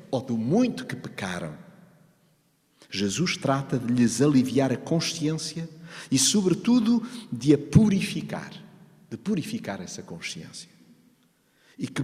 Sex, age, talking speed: male, 50-69, 115 wpm